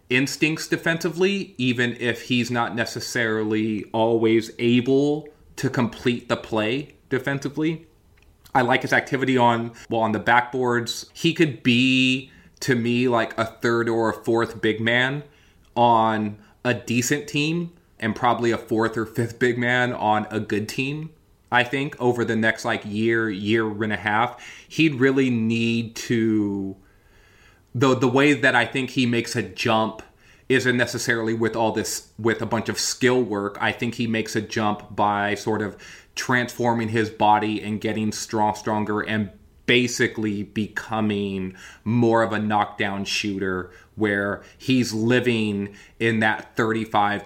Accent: American